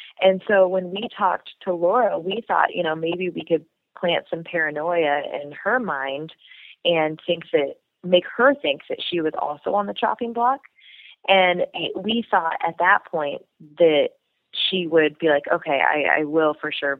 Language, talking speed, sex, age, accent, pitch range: English, 180 wpm, female, 20-39, American, 155-190 Hz